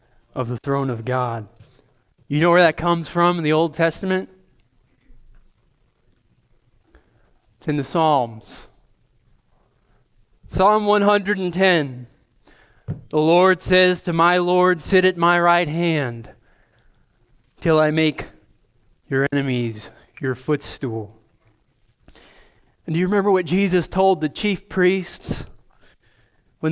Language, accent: English, American